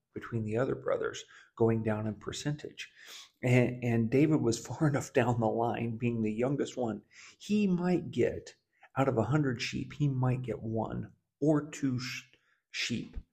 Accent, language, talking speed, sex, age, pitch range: American, English, 160 wpm, male, 40-59, 115-145 Hz